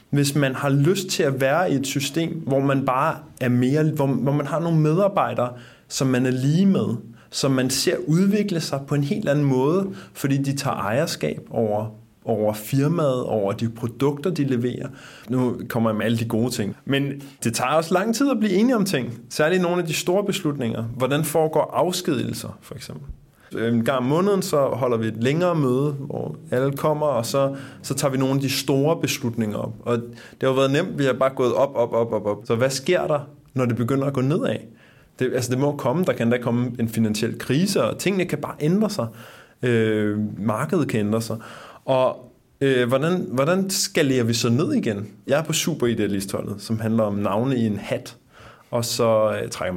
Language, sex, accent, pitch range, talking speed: Danish, male, native, 115-150 Hz, 210 wpm